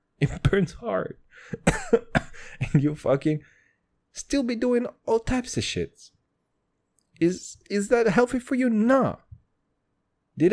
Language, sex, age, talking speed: English, male, 30-49, 125 wpm